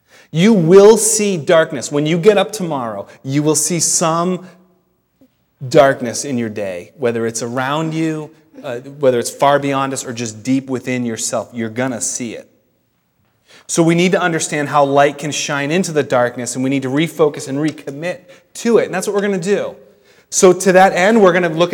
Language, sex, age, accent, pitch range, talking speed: English, male, 30-49, American, 140-180 Hz, 200 wpm